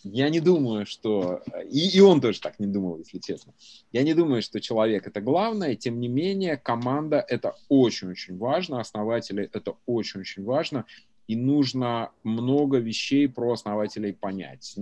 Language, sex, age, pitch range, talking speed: Russian, male, 30-49, 100-130 Hz, 155 wpm